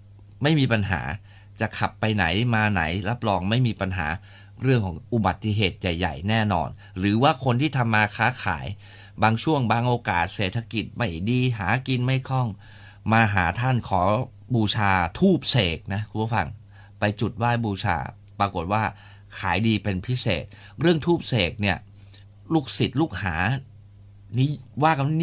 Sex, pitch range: male, 100-120 Hz